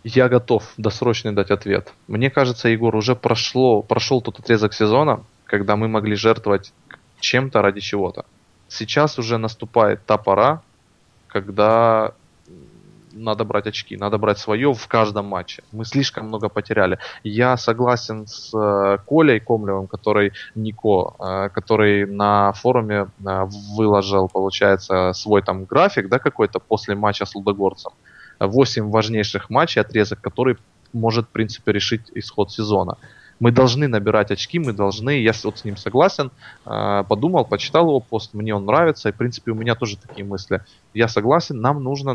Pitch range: 100-120 Hz